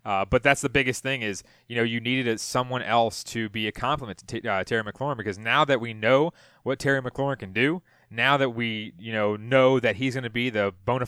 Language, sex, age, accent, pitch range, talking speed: English, male, 20-39, American, 105-125 Hz, 240 wpm